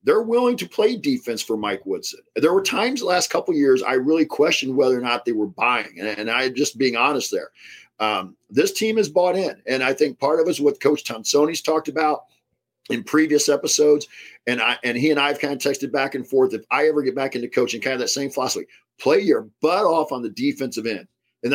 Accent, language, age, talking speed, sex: American, English, 40-59, 235 wpm, male